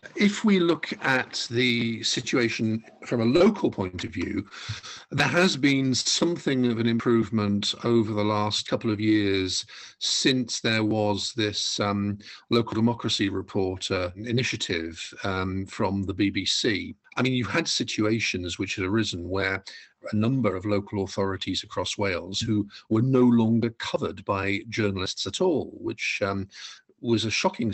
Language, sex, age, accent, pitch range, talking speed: English, male, 50-69, British, 100-115 Hz, 150 wpm